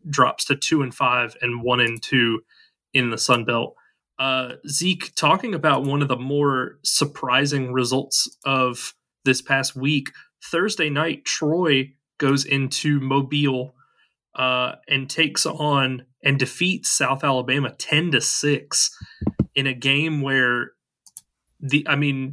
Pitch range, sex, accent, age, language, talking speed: 130-155 Hz, male, American, 20-39, English, 135 wpm